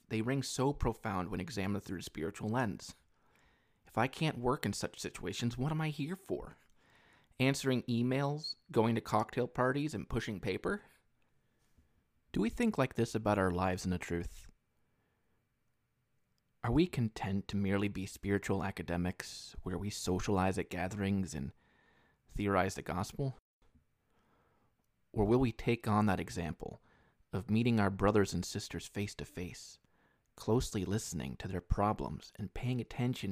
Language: English